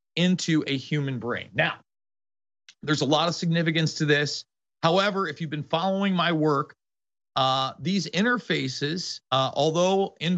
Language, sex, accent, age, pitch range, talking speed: English, male, American, 40-59, 130-170 Hz, 145 wpm